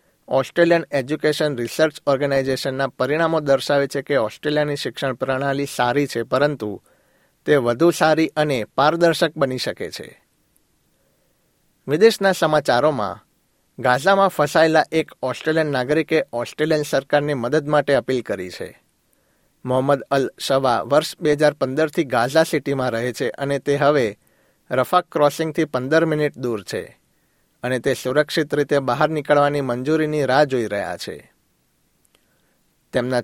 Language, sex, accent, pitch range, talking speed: Gujarati, male, native, 130-155 Hz, 120 wpm